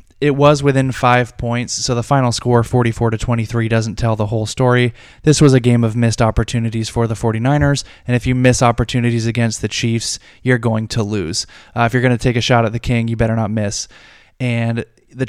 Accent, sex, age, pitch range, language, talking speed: American, male, 20-39, 115-125 Hz, English, 215 wpm